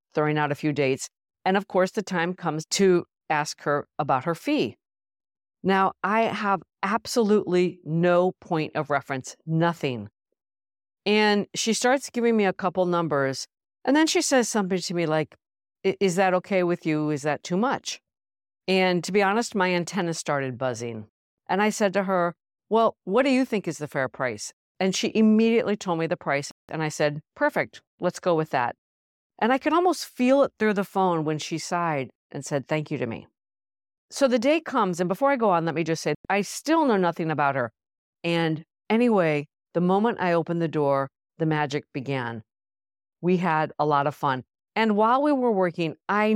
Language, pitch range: English, 145-200 Hz